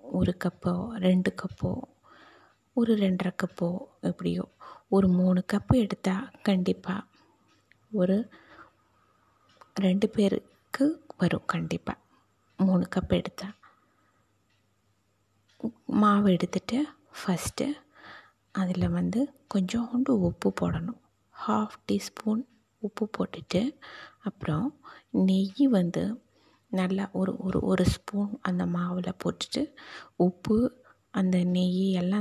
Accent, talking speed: native, 90 wpm